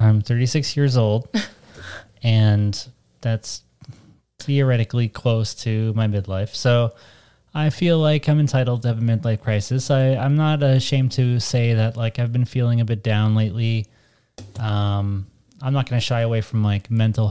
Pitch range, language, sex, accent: 110-130 Hz, English, male, American